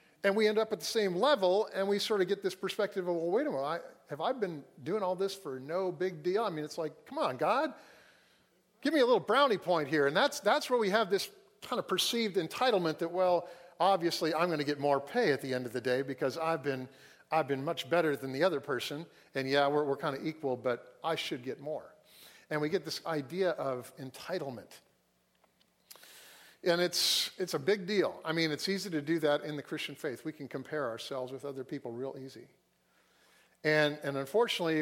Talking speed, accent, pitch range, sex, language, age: 225 wpm, American, 145-195 Hz, male, English, 50-69